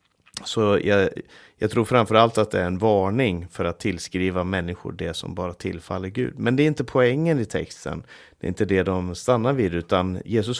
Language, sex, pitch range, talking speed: Swedish, male, 90-115 Hz, 200 wpm